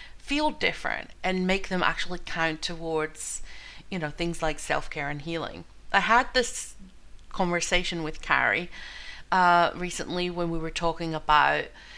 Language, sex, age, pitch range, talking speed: English, female, 40-59, 165-195 Hz, 140 wpm